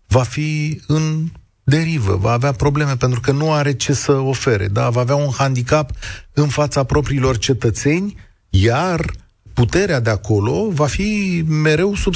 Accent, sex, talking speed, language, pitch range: native, male, 150 wpm, Romanian, 100-140 Hz